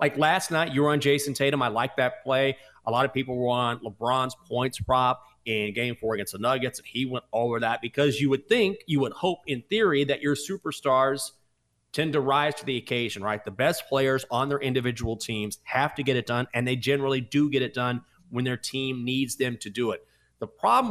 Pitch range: 115-145 Hz